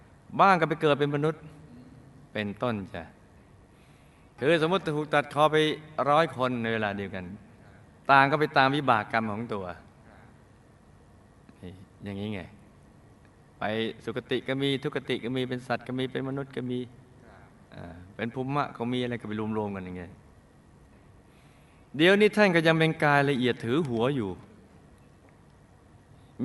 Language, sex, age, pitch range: Thai, male, 20-39, 105-145 Hz